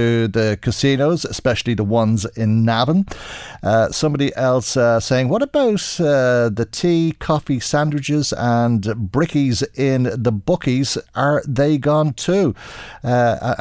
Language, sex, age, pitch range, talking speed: English, male, 50-69, 105-135 Hz, 130 wpm